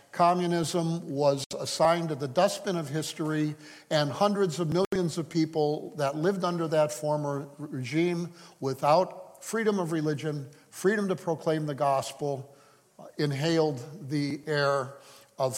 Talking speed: 125 wpm